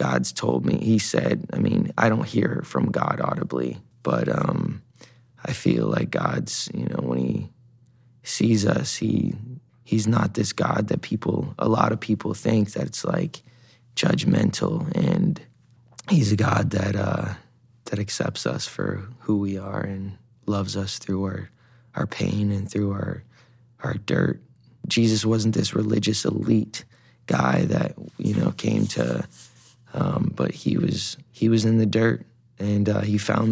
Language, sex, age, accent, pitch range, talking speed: English, male, 20-39, American, 100-120 Hz, 160 wpm